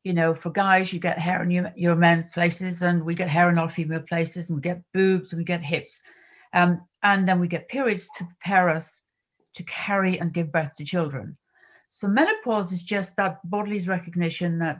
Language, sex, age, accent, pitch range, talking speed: English, female, 50-69, British, 165-190 Hz, 210 wpm